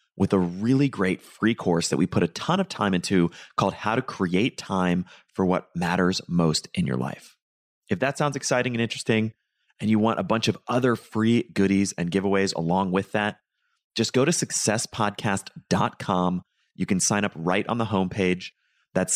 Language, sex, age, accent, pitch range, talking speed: English, male, 30-49, American, 95-120 Hz, 185 wpm